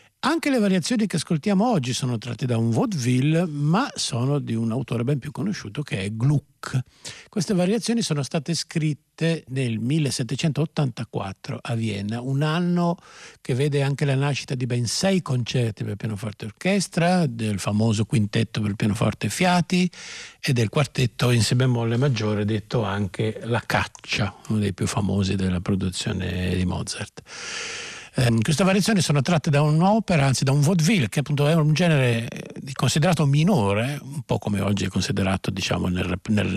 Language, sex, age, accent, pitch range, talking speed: Italian, male, 50-69, native, 110-160 Hz, 155 wpm